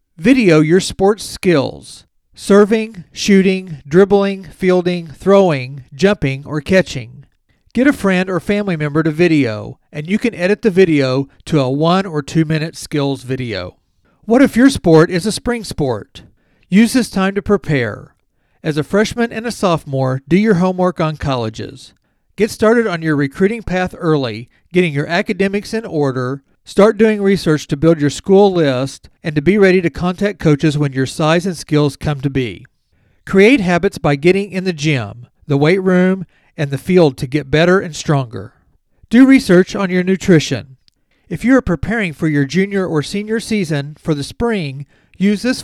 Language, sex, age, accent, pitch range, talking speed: English, male, 40-59, American, 140-195 Hz, 170 wpm